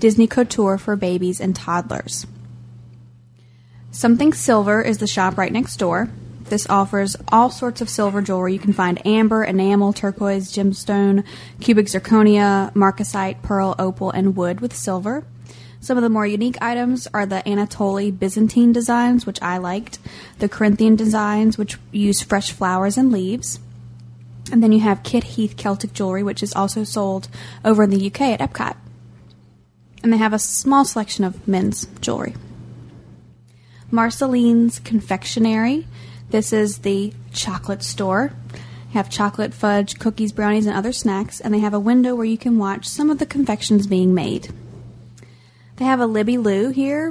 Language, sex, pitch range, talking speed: English, female, 190-225 Hz, 160 wpm